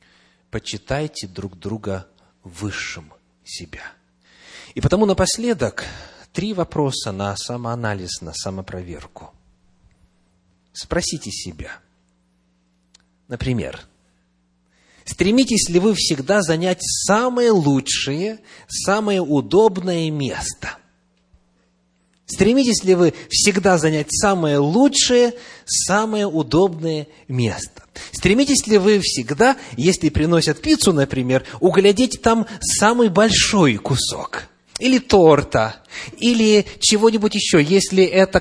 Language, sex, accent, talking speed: Russian, male, native, 90 wpm